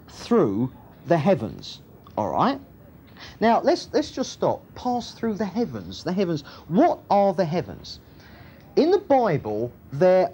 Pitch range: 120-195 Hz